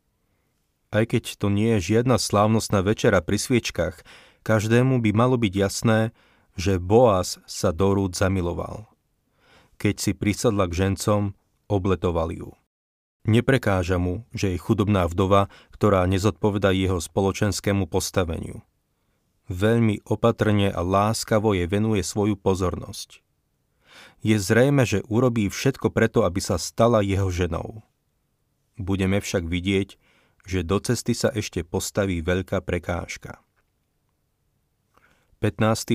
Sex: male